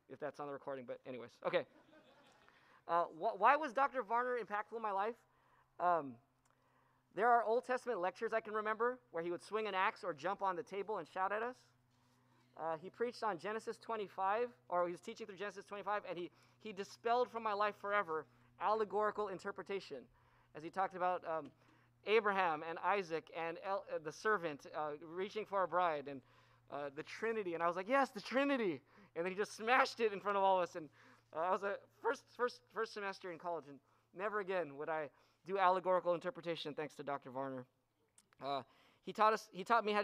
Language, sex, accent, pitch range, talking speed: English, male, American, 160-205 Hz, 205 wpm